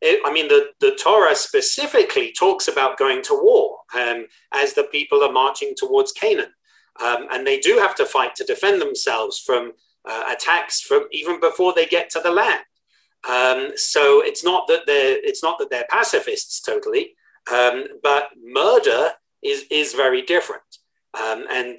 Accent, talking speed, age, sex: British, 170 wpm, 40-59, male